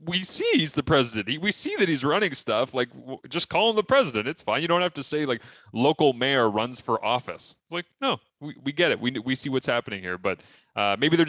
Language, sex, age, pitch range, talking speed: English, male, 20-39, 100-135 Hz, 250 wpm